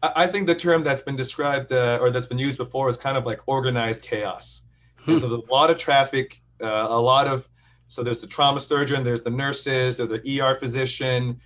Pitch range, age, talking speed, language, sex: 120-135 Hz, 40-59, 220 wpm, English, male